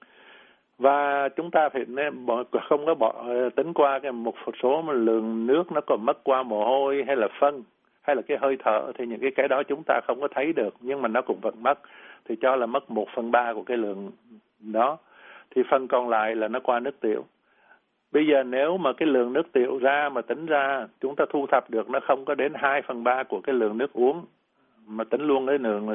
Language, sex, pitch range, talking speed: Vietnamese, male, 115-135 Hz, 230 wpm